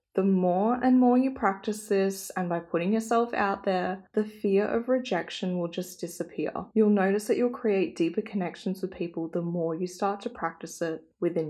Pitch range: 175-205 Hz